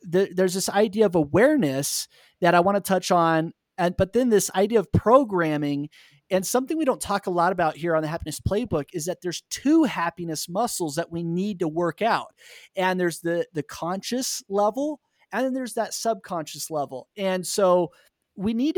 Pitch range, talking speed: 160-205 Hz, 190 wpm